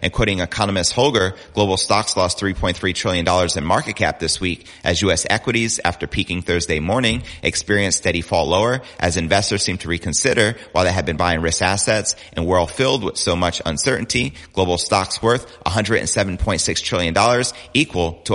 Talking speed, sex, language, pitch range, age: 170 wpm, male, English, 85-105 Hz, 30-49